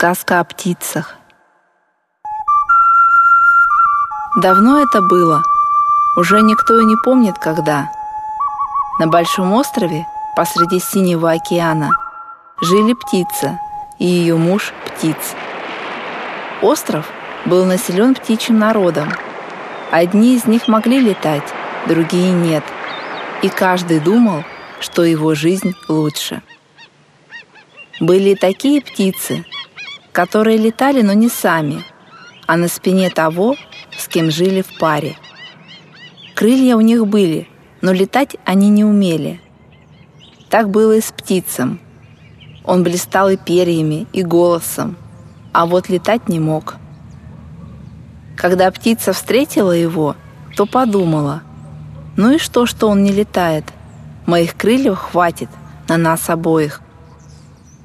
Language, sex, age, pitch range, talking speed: Russian, female, 20-39, 170-230 Hz, 110 wpm